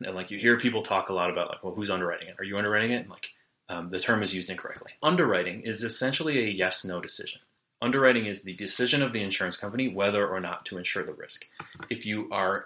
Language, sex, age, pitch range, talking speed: English, male, 30-49, 95-115 Hz, 240 wpm